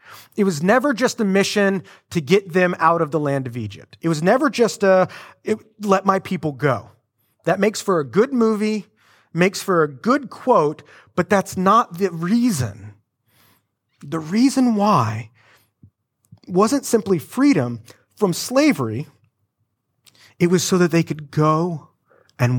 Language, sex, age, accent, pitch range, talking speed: English, male, 30-49, American, 125-180 Hz, 150 wpm